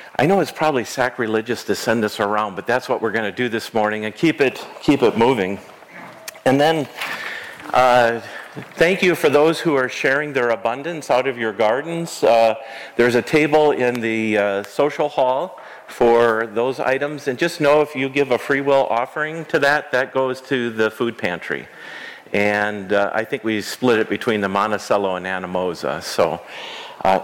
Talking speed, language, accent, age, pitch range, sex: 185 wpm, English, American, 50-69, 110-155 Hz, male